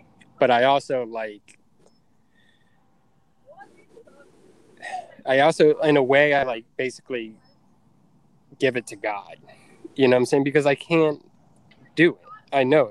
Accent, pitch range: American, 115-145 Hz